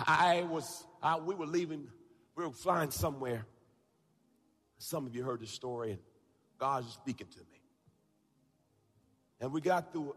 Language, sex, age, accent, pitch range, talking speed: English, male, 40-59, American, 120-185 Hz, 155 wpm